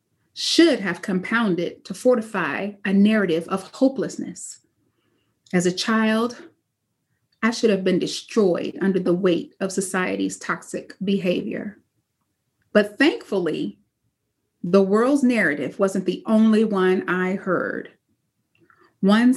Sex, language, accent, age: female, English, American, 30-49